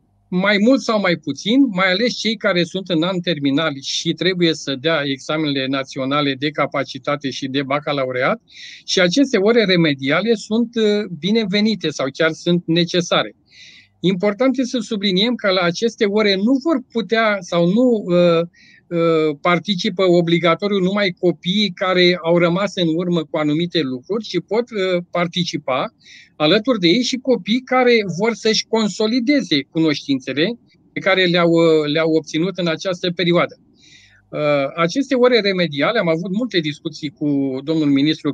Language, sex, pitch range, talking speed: Romanian, male, 160-215 Hz, 140 wpm